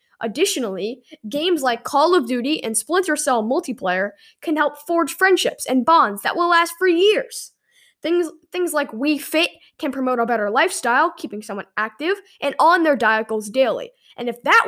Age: 10-29